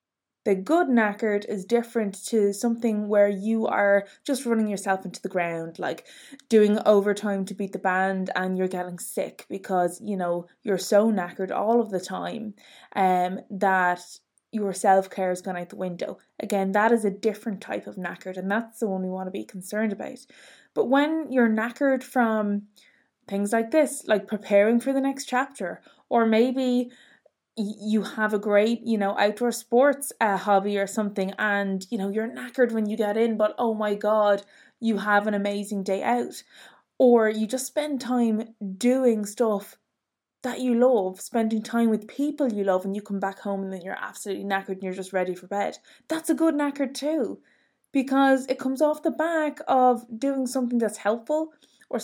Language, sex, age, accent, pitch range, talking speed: English, female, 20-39, Irish, 195-245 Hz, 185 wpm